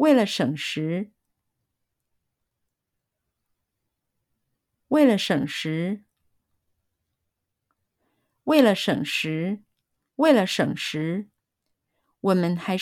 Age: 50-69